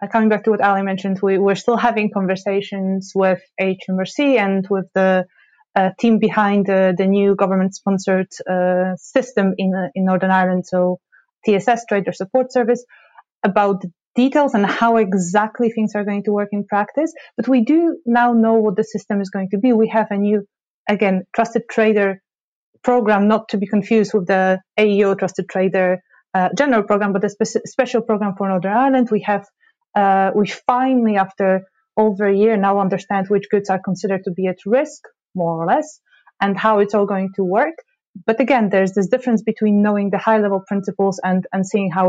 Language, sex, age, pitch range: English, female, 20-39, 190-220 Hz